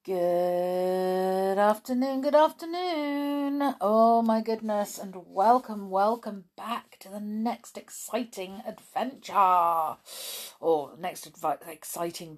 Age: 40-59